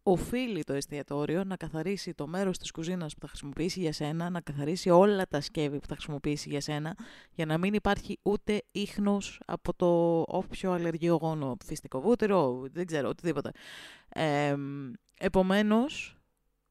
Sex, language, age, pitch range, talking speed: female, Greek, 20-39, 165-220 Hz, 145 wpm